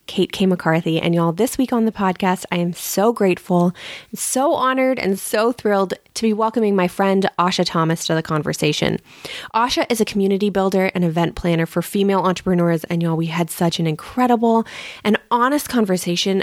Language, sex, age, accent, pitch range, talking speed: English, female, 20-39, American, 180-225 Hz, 185 wpm